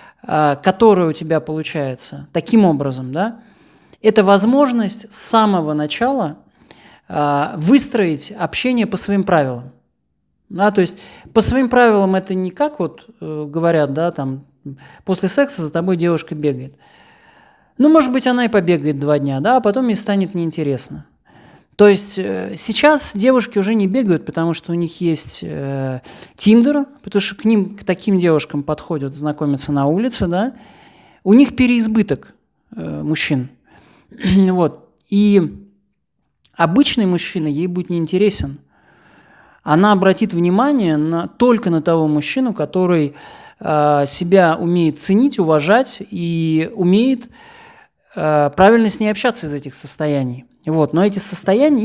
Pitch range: 150-210 Hz